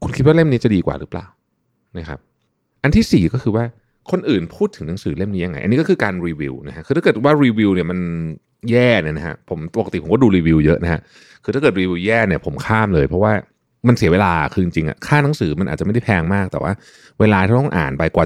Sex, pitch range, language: male, 80-115 Hz, Thai